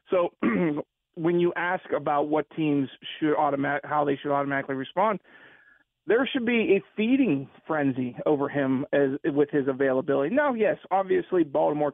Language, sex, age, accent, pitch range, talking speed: English, male, 40-59, American, 145-200 Hz, 150 wpm